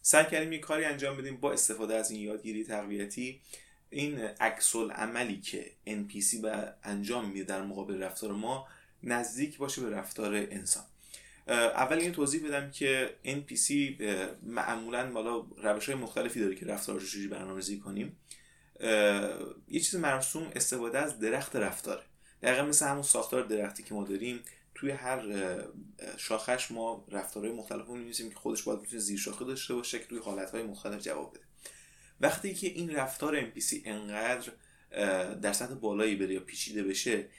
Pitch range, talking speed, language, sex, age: 100-130 Hz, 150 wpm, Persian, male, 20-39